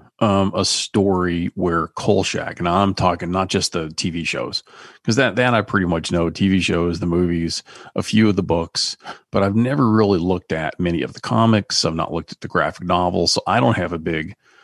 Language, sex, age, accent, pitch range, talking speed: English, male, 40-59, American, 85-115 Hz, 215 wpm